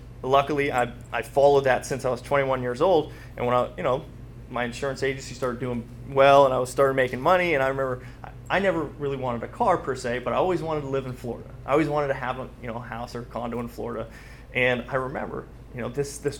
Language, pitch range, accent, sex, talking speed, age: English, 115-135 Hz, American, male, 255 wpm, 30-49